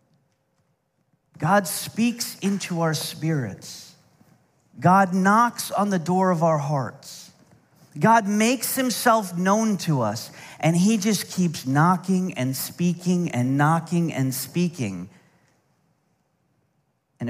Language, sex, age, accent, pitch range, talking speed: English, male, 40-59, American, 155-205 Hz, 110 wpm